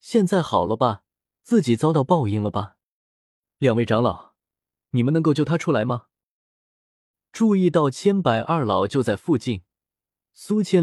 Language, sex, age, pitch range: Chinese, male, 20-39, 115-170 Hz